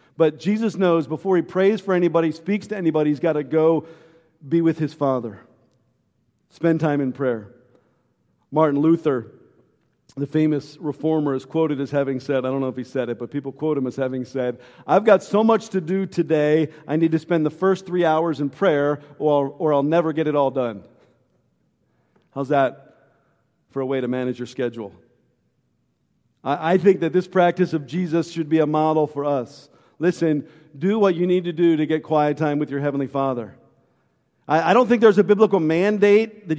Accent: American